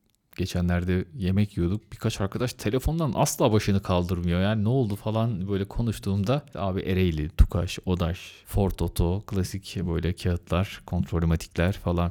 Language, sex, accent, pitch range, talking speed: Turkish, male, native, 90-130 Hz, 135 wpm